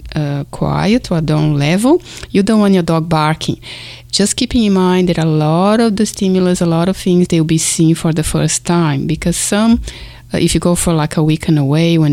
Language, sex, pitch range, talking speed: English, female, 155-190 Hz, 225 wpm